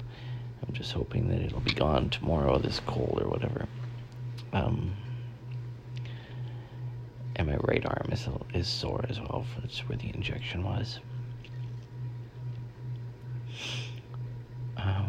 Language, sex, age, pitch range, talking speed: English, male, 40-59, 120-125 Hz, 110 wpm